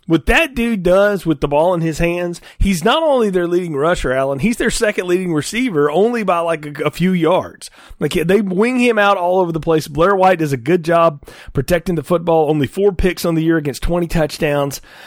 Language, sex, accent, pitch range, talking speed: English, male, American, 145-200 Hz, 225 wpm